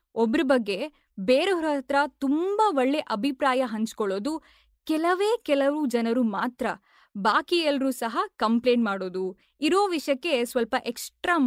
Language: Kannada